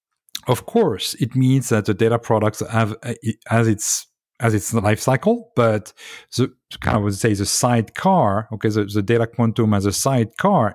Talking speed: 180 wpm